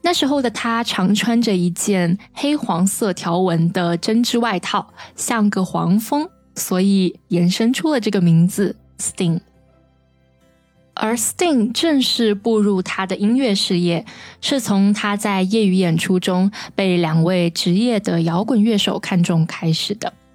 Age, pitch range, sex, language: 20-39, 180-225 Hz, female, Chinese